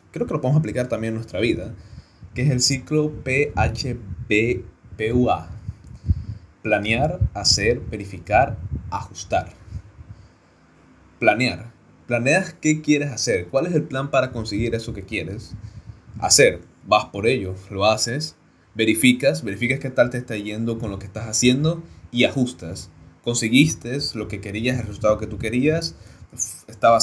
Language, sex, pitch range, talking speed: Spanish, male, 105-130 Hz, 140 wpm